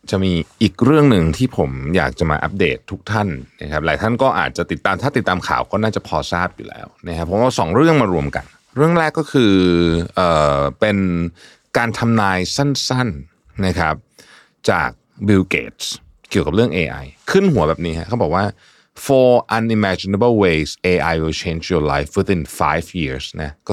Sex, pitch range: male, 80-115 Hz